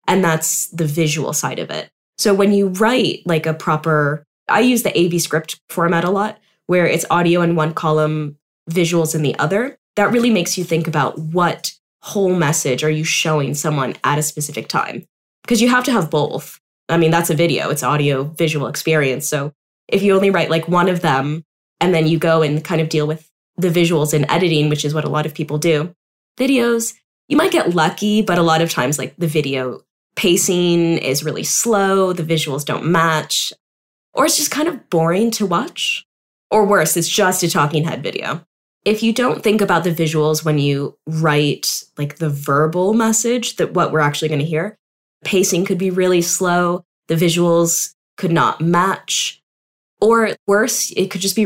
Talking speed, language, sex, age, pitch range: 195 wpm, English, female, 10-29, 155-190 Hz